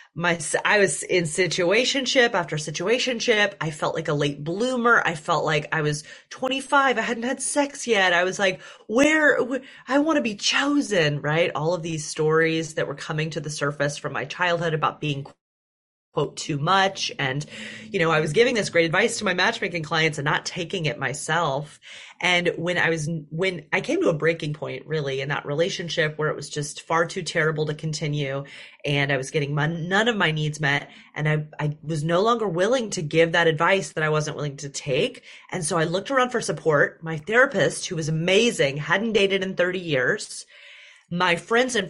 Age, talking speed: 30-49, 205 wpm